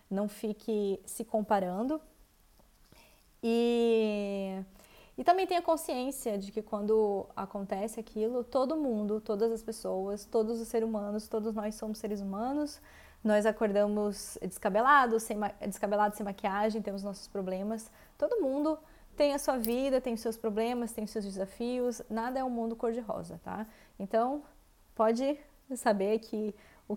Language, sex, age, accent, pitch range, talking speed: English, female, 20-39, Brazilian, 200-240 Hz, 140 wpm